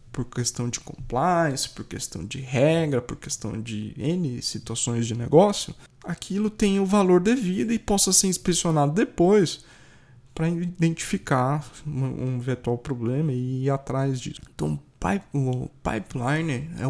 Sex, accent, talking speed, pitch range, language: male, Brazilian, 135 wpm, 130-200 Hz, Portuguese